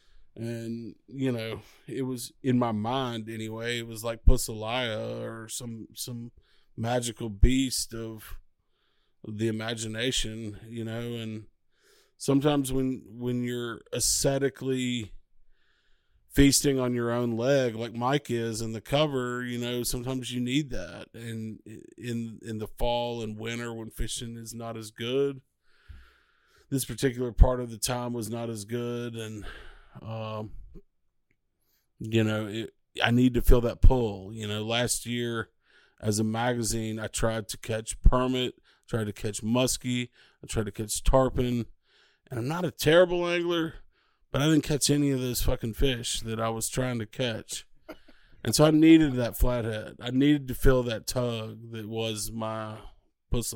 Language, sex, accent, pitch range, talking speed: English, male, American, 110-125 Hz, 155 wpm